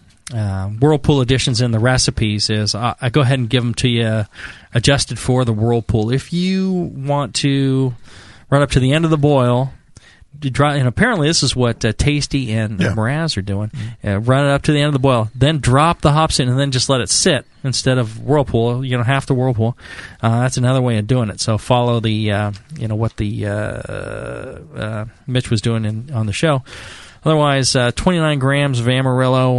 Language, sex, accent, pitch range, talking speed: English, male, American, 110-135 Hz, 215 wpm